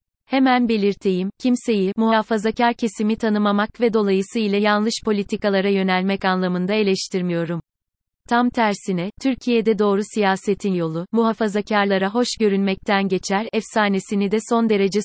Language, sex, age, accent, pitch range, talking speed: Turkish, female, 30-49, native, 190-220 Hz, 110 wpm